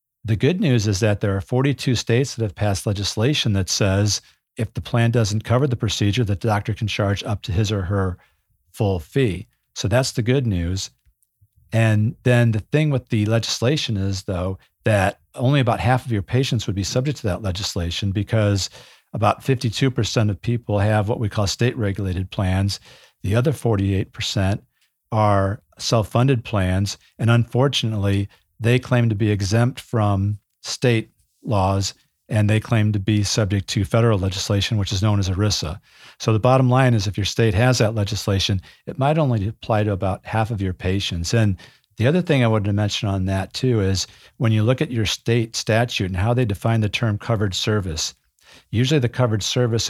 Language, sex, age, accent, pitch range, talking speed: English, male, 50-69, American, 100-120 Hz, 185 wpm